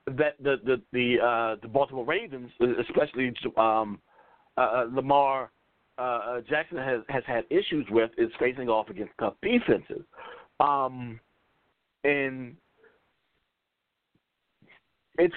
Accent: American